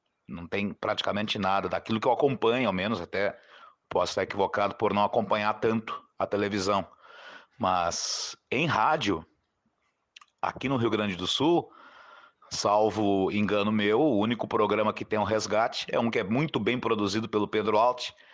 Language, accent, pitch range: Portuguese, Brazilian, 105-125 Hz